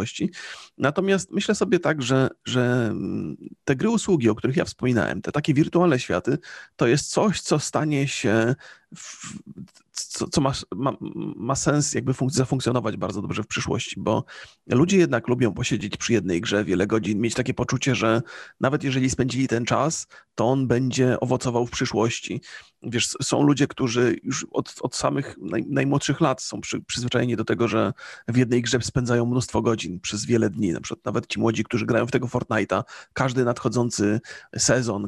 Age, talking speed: 30-49, 165 wpm